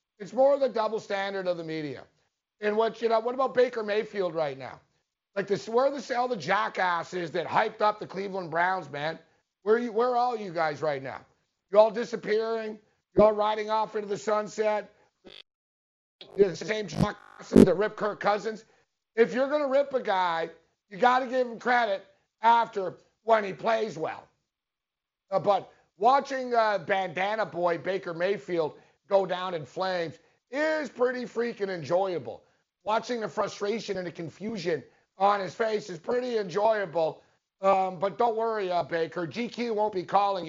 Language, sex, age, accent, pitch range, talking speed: English, male, 50-69, American, 175-225 Hz, 175 wpm